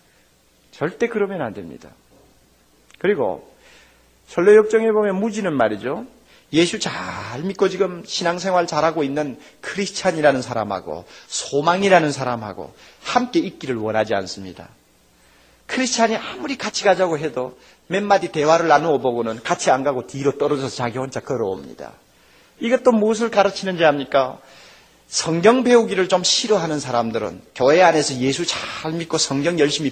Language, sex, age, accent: Korean, male, 40-59, native